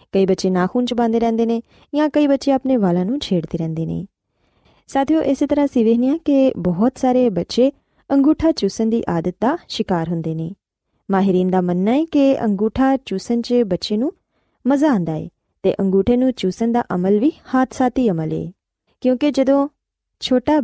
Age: 20-39